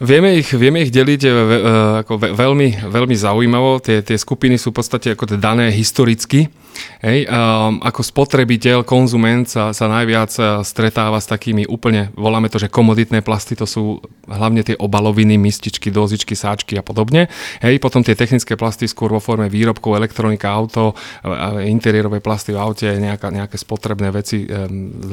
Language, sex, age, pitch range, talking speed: Slovak, male, 30-49, 105-125 Hz, 155 wpm